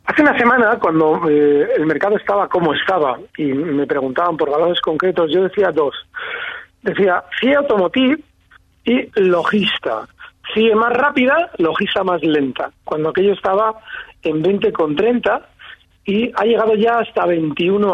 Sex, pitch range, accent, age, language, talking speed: male, 185-255 Hz, Spanish, 40-59, Spanish, 150 wpm